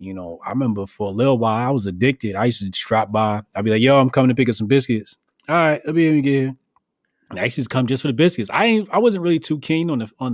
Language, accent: English, American